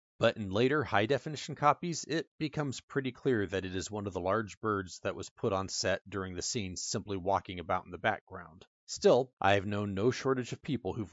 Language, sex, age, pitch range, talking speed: English, male, 30-49, 95-120 Hz, 215 wpm